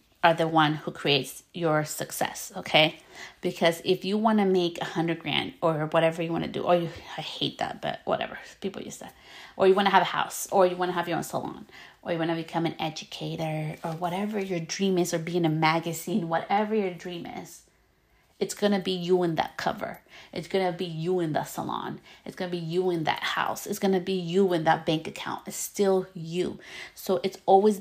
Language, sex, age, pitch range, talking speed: English, female, 30-49, 165-190 Hz, 235 wpm